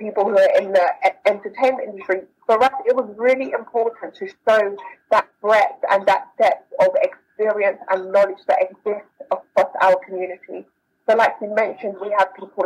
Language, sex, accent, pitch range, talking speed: English, female, British, 195-245 Hz, 170 wpm